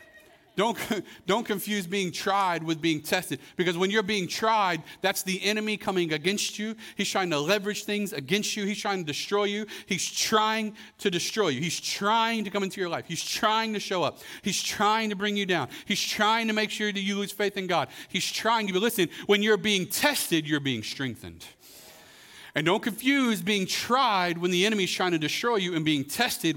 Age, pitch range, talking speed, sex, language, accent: 40-59, 155-205 Hz, 210 wpm, male, English, American